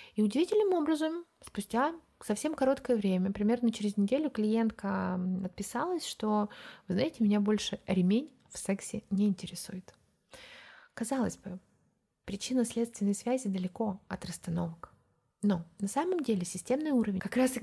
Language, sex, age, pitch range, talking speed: Russian, female, 20-39, 190-230 Hz, 135 wpm